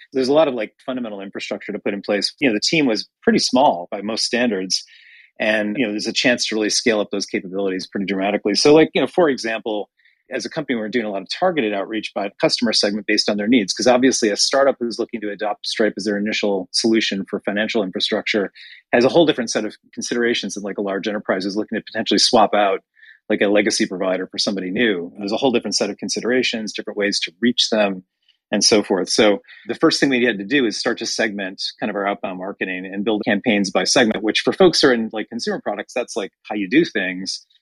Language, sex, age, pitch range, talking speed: English, male, 30-49, 100-120 Hz, 245 wpm